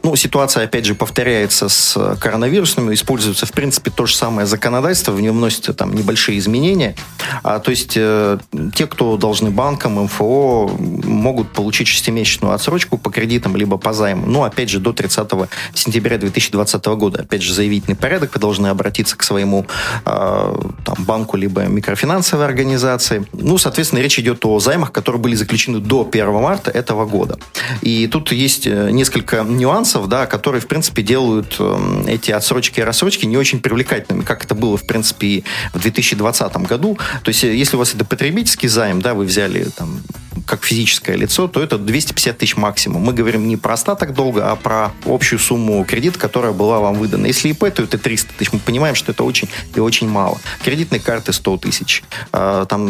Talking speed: 175 wpm